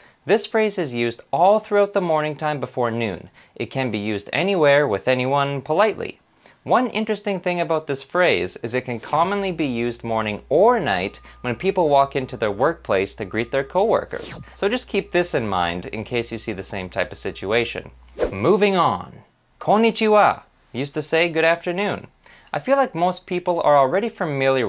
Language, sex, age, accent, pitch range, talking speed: English, male, 20-39, American, 115-185 Hz, 180 wpm